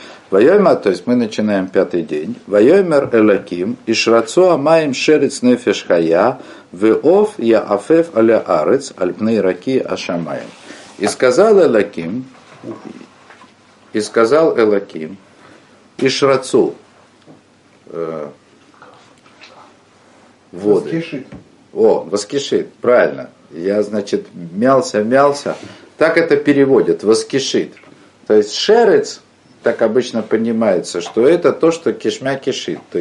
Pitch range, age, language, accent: 110-165 Hz, 50-69, Russian, native